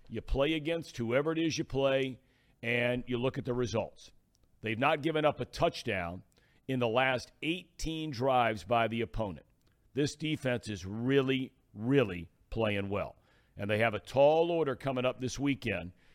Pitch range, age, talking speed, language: 120-150 Hz, 50-69, 165 wpm, English